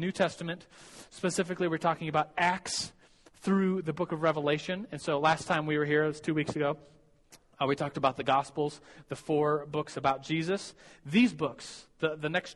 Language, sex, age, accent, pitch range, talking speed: English, male, 30-49, American, 145-175 Hz, 190 wpm